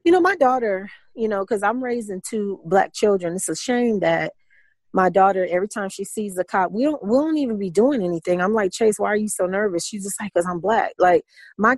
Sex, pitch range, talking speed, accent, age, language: female, 180-235 Hz, 245 wpm, American, 30-49, English